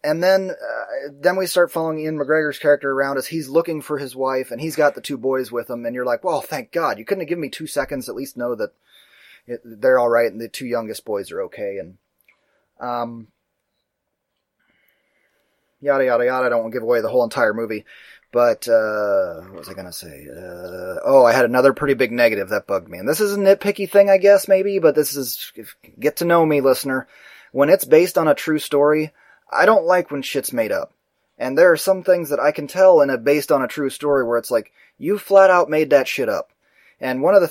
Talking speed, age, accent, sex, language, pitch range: 240 wpm, 30-49, American, male, English, 125-175 Hz